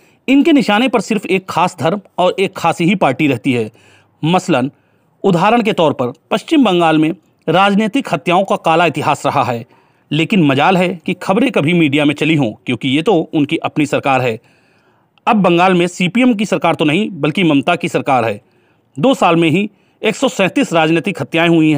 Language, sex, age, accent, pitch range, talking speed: Hindi, male, 40-59, native, 150-195 Hz, 185 wpm